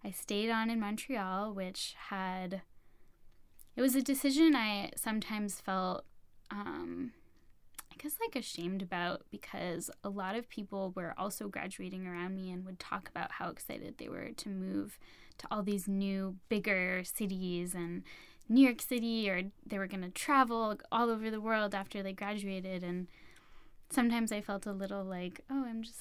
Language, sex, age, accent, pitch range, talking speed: English, female, 10-29, American, 190-230 Hz, 170 wpm